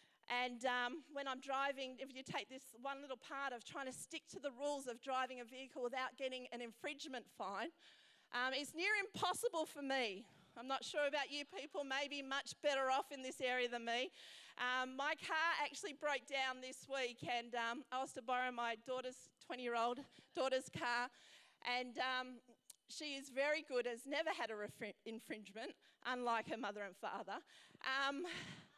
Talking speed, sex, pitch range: 180 wpm, female, 255-335 Hz